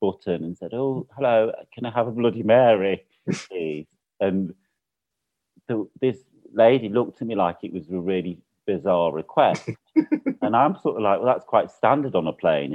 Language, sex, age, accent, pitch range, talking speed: English, male, 40-59, British, 95-135 Hz, 180 wpm